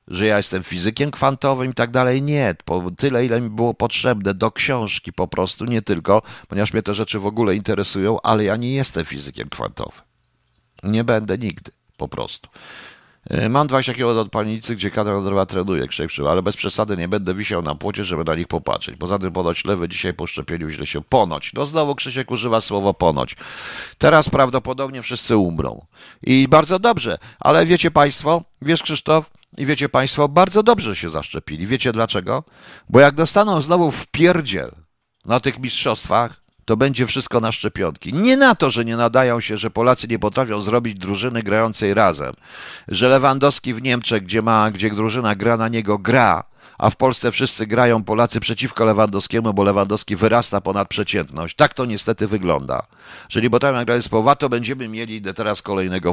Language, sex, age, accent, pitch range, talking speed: Polish, male, 50-69, native, 100-130 Hz, 175 wpm